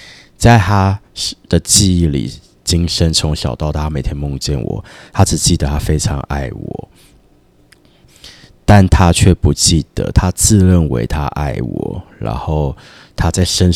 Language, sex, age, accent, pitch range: Chinese, male, 20-39, native, 75-90 Hz